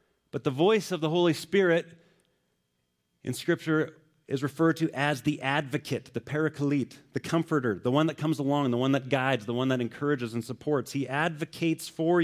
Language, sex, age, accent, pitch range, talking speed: English, male, 30-49, American, 110-160 Hz, 180 wpm